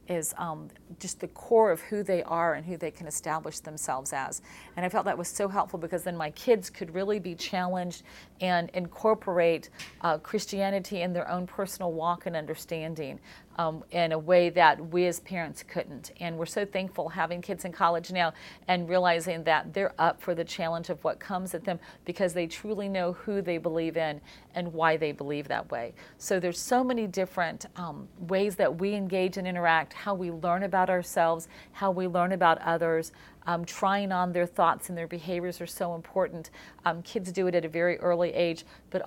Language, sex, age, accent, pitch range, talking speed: English, female, 40-59, American, 165-185 Hz, 200 wpm